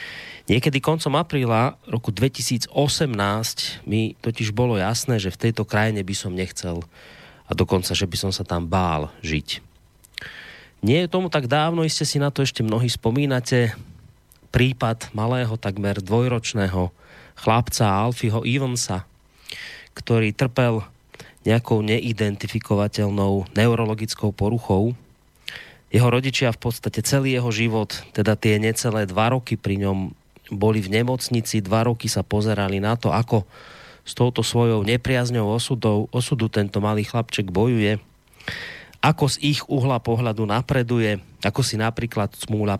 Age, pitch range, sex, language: 30-49, 105-125 Hz, male, Slovak